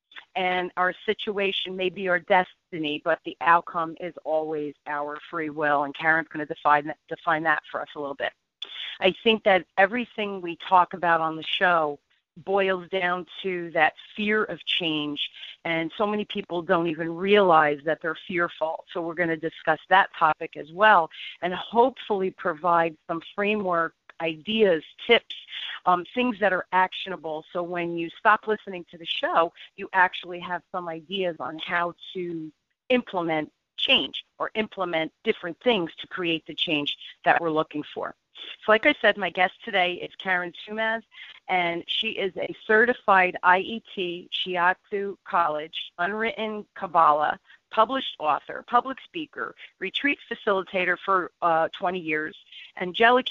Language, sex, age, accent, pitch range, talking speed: English, female, 40-59, American, 165-195 Hz, 150 wpm